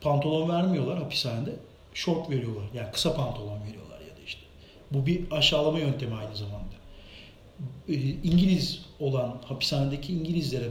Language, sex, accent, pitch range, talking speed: Turkish, male, native, 125-175 Hz, 125 wpm